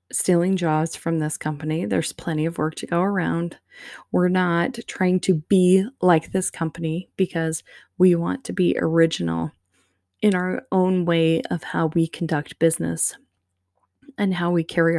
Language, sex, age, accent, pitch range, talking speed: English, female, 20-39, American, 140-185 Hz, 155 wpm